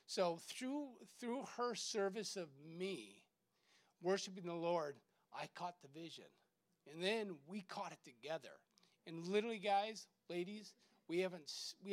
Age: 40-59